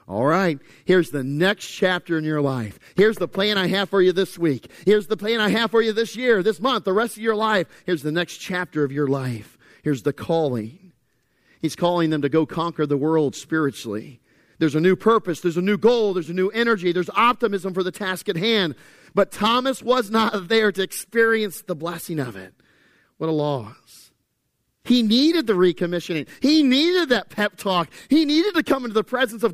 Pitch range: 150-225 Hz